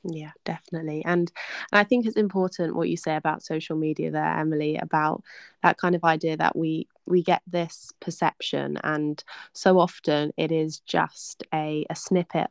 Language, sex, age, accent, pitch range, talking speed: English, female, 20-39, British, 150-175 Hz, 175 wpm